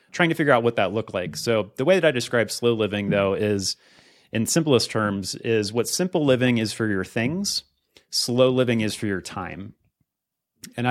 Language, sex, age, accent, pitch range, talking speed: English, male, 30-49, American, 105-120 Hz, 200 wpm